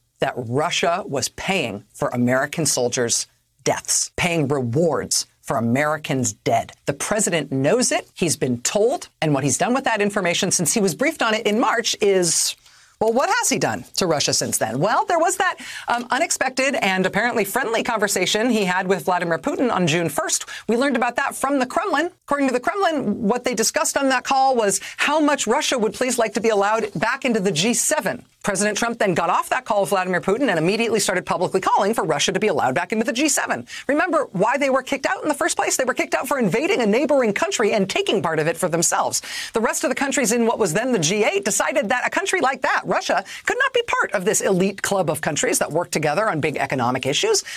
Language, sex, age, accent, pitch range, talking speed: English, female, 40-59, American, 175-285 Hz, 225 wpm